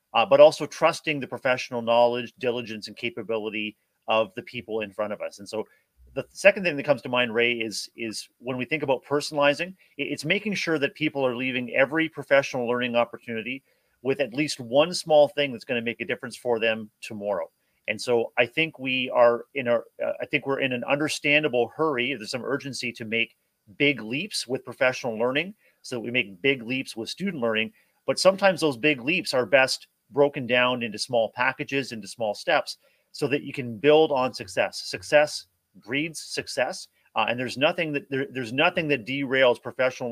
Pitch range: 115-145 Hz